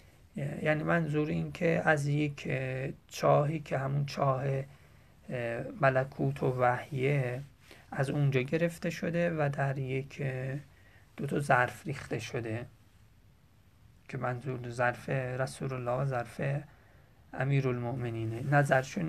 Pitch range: 125-145 Hz